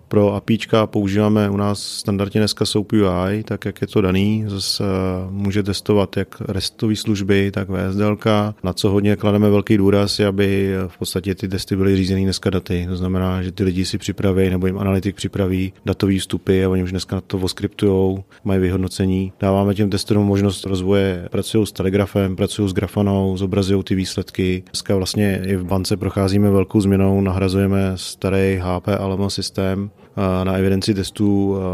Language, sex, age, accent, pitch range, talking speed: Czech, male, 30-49, native, 95-105 Hz, 170 wpm